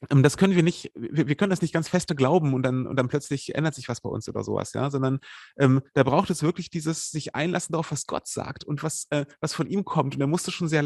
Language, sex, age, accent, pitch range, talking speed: German, male, 30-49, German, 135-165 Hz, 270 wpm